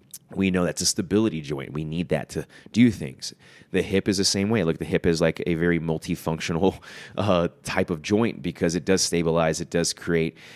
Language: English